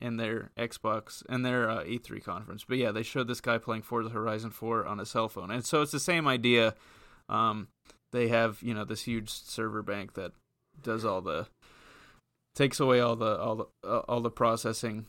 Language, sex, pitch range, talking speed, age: English, male, 110-125 Hz, 195 wpm, 20-39